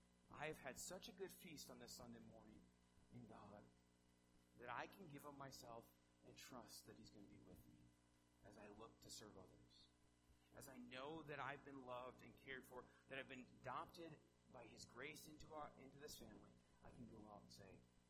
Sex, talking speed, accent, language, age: male, 205 wpm, American, English, 30-49